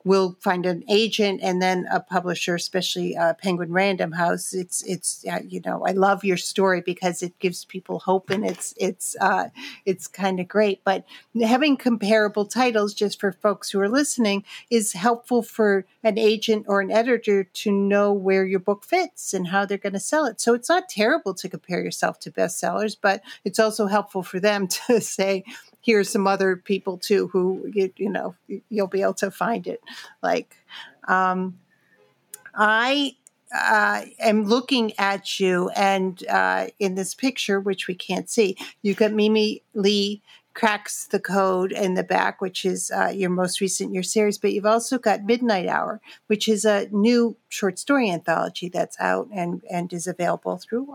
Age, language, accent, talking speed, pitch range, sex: 50-69, English, American, 180 wpm, 185-220 Hz, female